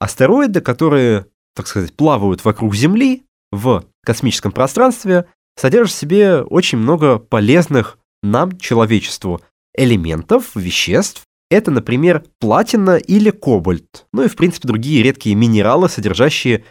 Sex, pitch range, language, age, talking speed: male, 110-165 Hz, Russian, 20-39, 120 wpm